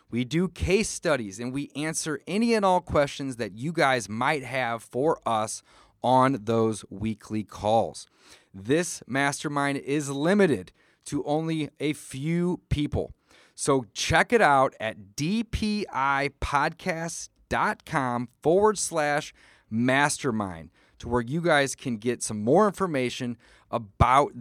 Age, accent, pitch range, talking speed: 30-49, American, 115-155 Hz, 125 wpm